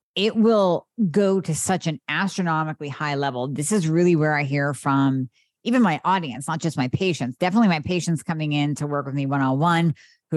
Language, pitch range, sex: English, 145-185 Hz, female